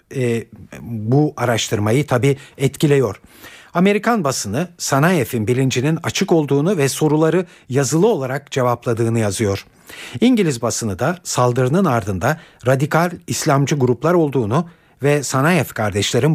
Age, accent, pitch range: 50-69, native, 115-160 Hz